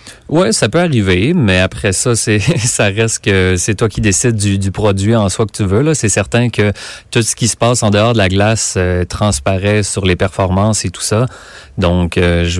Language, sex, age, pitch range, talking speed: French, male, 30-49, 95-110 Hz, 230 wpm